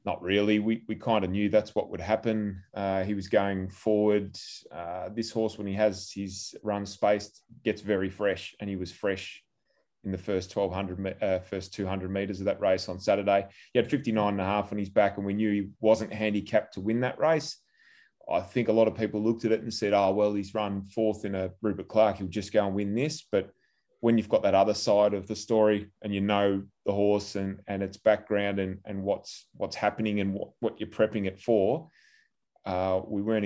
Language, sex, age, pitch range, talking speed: English, male, 20-39, 95-110 Hz, 220 wpm